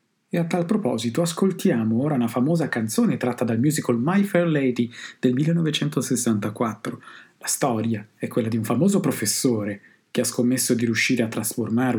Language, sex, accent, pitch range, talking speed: Italian, male, native, 115-145 Hz, 160 wpm